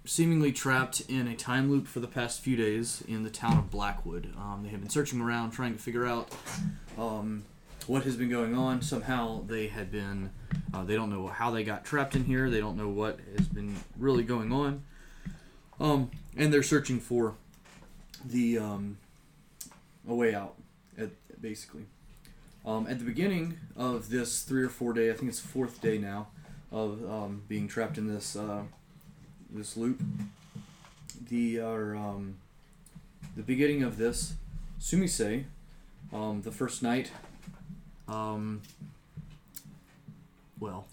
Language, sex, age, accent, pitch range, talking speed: English, male, 20-39, American, 110-145 Hz, 160 wpm